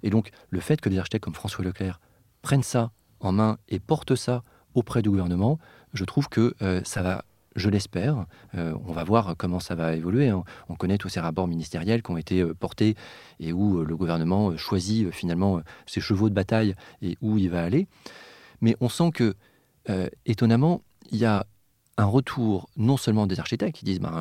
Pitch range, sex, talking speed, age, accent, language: 95-125 Hz, male, 190 wpm, 40-59, French, French